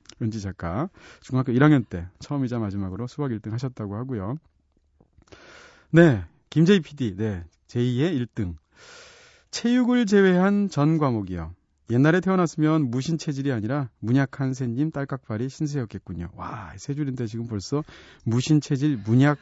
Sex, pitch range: male, 115-155 Hz